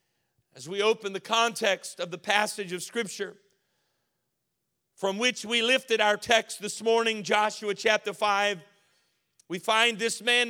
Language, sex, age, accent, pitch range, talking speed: English, male, 50-69, American, 205-240 Hz, 145 wpm